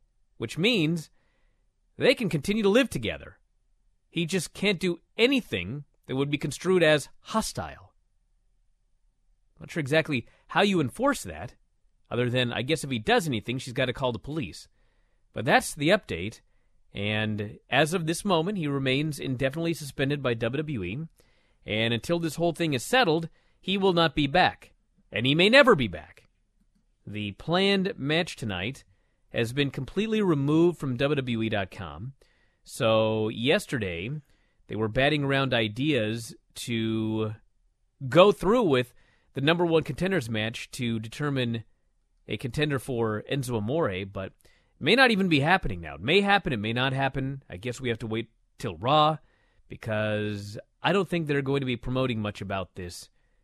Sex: male